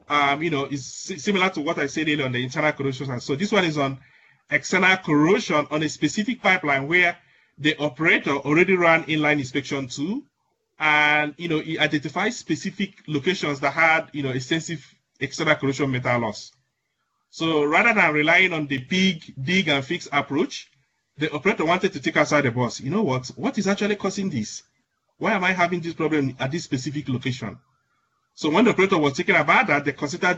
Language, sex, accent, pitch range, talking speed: English, male, Nigerian, 140-180 Hz, 190 wpm